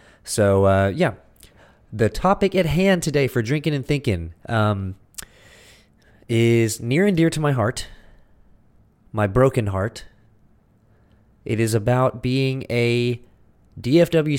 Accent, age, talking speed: American, 20-39, 120 wpm